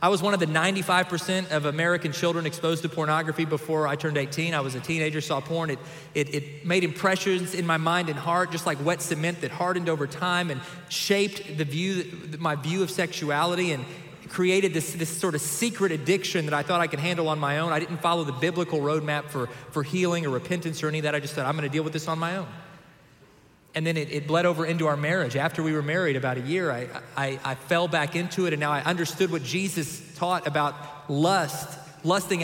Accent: American